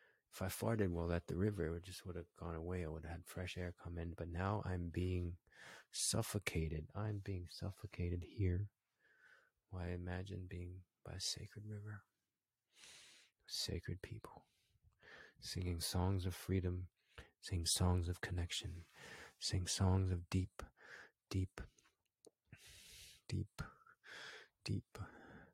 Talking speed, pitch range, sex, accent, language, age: 130 wpm, 85-100 Hz, male, American, English, 30-49